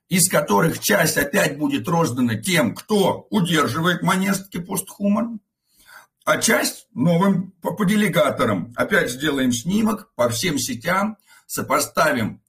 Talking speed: 115 wpm